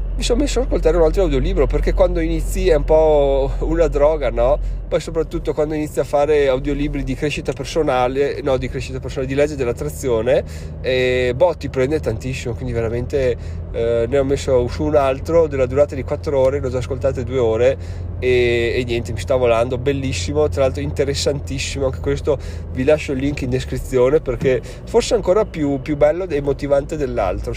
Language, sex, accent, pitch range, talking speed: Italian, male, native, 125-150 Hz, 185 wpm